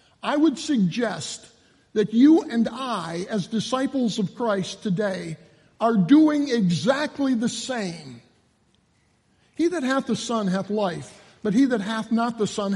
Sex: male